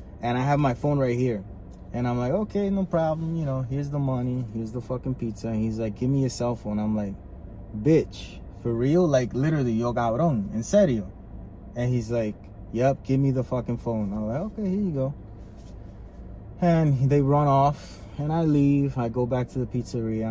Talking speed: 205 wpm